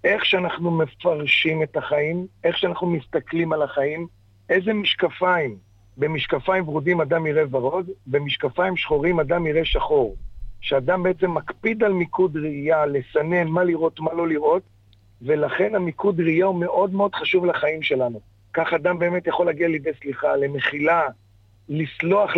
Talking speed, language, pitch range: 140 wpm, Hebrew, 145-185 Hz